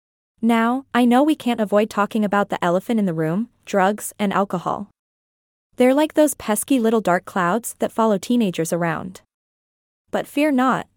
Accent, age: American, 20-39